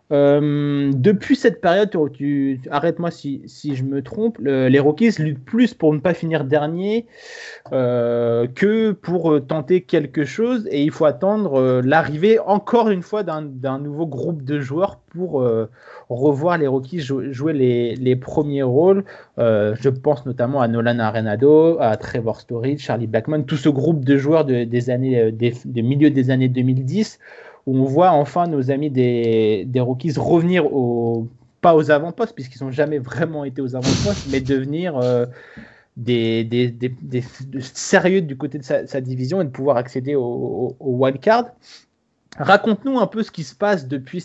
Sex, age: male, 30-49